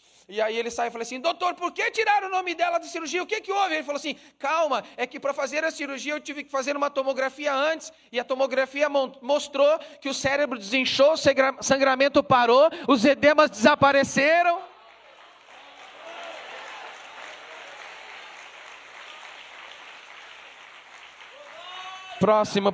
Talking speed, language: 150 wpm, Portuguese